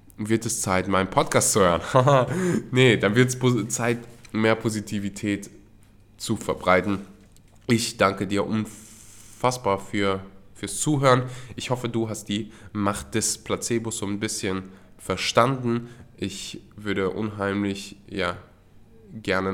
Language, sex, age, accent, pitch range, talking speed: German, male, 20-39, German, 105-135 Hz, 115 wpm